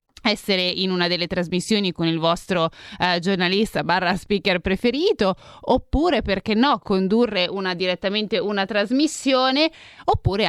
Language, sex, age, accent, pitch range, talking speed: Italian, female, 30-49, native, 180-240 Hz, 125 wpm